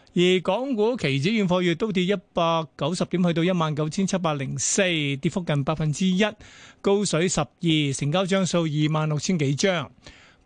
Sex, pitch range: male, 155-195 Hz